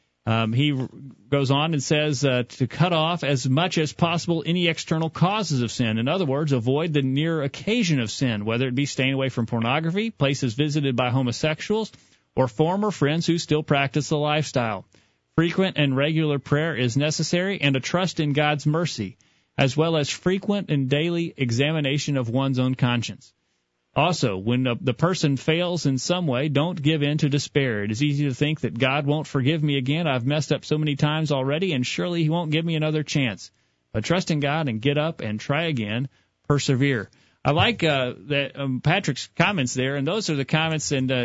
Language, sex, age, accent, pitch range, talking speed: English, male, 40-59, American, 130-155 Hz, 195 wpm